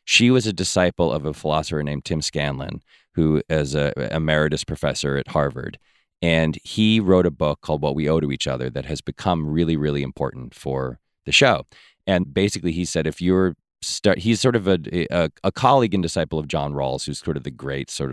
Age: 30-49